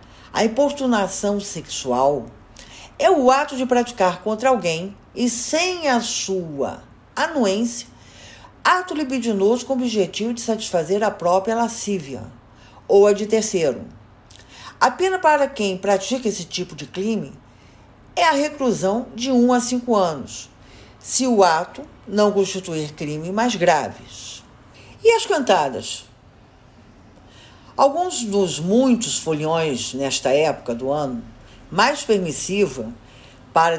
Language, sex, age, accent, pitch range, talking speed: Portuguese, female, 50-69, Brazilian, 135-225 Hz, 120 wpm